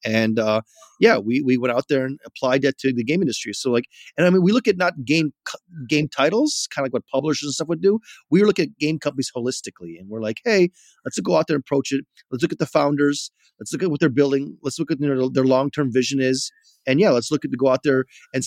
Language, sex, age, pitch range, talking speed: English, male, 30-49, 130-150 Hz, 275 wpm